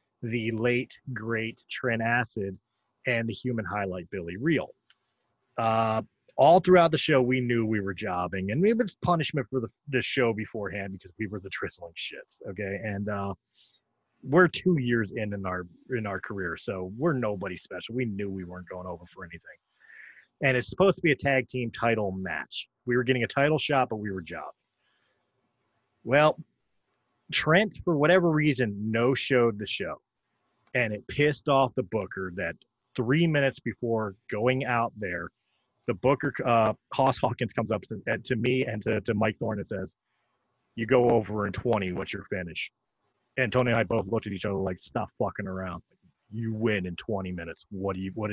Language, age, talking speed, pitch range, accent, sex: English, 30-49, 185 wpm, 100-125 Hz, American, male